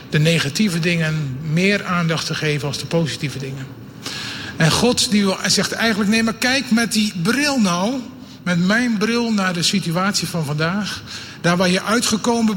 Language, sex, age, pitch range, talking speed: Dutch, male, 50-69, 150-205 Hz, 160 wpm